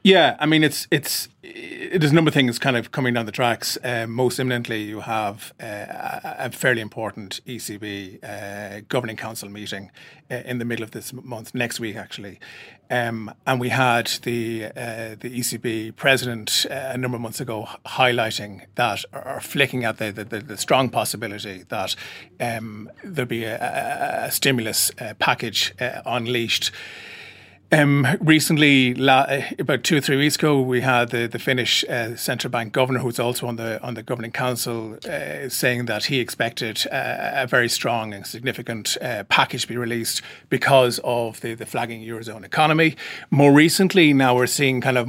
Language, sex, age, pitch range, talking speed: English, male, 30-49, 115-130 Hz, 175 wpm